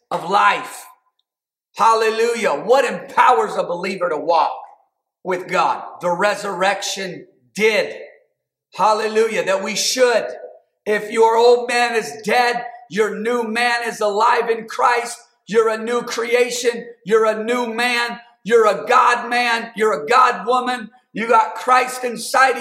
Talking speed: 135 wpm